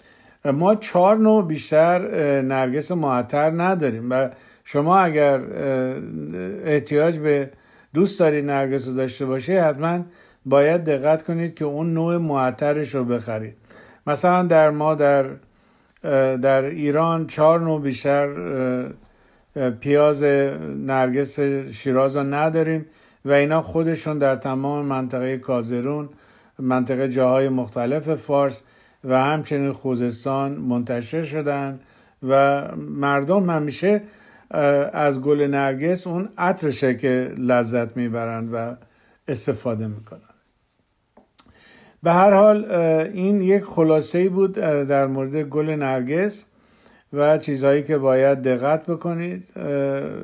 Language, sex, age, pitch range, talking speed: Persian, male, 50-69, 130-160 Hz, 105 wpm